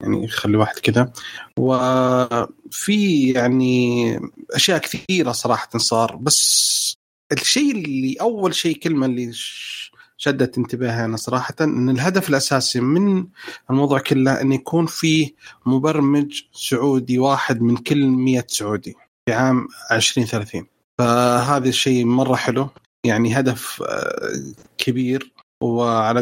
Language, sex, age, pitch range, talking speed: Arabic, male, 30-49, 120-145 Hz, 110 wpm